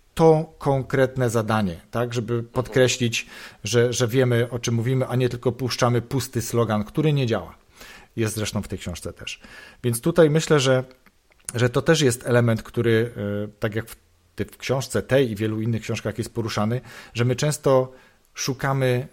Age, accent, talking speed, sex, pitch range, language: 40-59, native, 170 wpm, male, 105-130 Hz, Polish